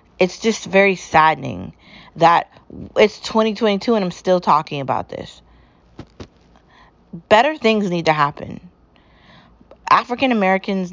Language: English